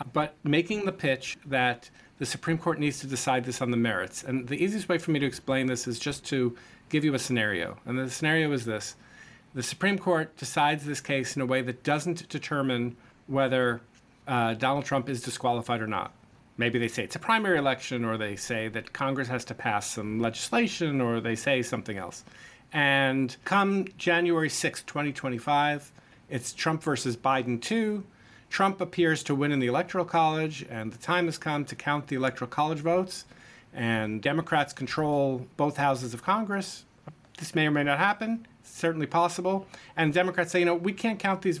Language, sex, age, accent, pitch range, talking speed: English, male, 50-69, American, 125-160 Hz, 190 wpm